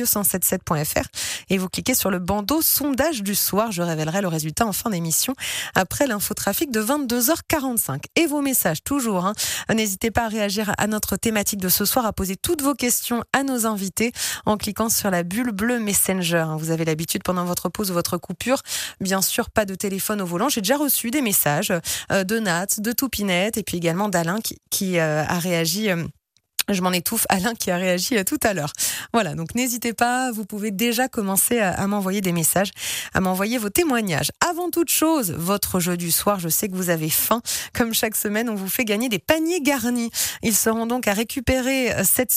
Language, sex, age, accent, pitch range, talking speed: French, female, 30-49, French, 185-245 Hz, 200 wpm